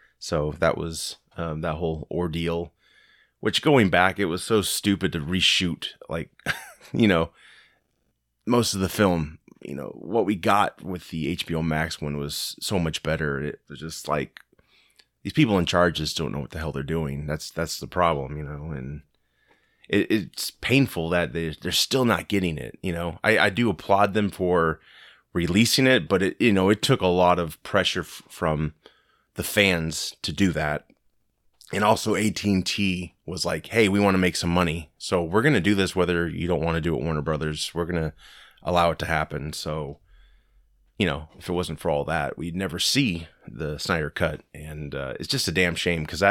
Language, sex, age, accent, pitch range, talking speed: English, male, 30-49, American, 80-95 Hz, 200 wpm